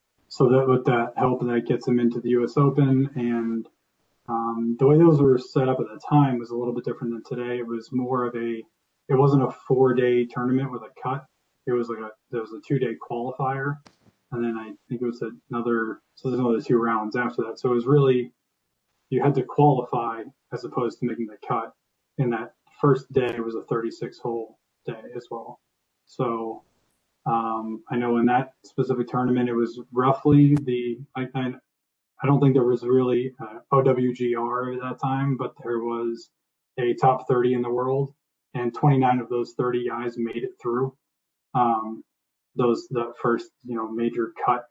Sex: male